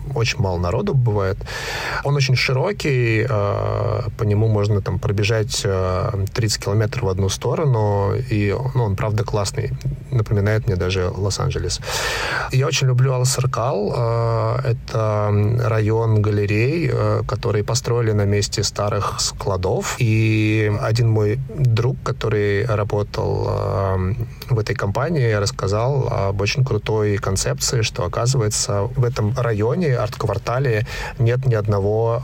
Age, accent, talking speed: 30-49, native, 115 wpm